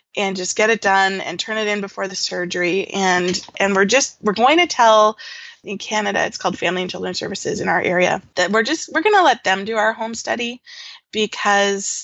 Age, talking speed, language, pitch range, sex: 20-39, 220 wpm, English, 195-260 Hz, female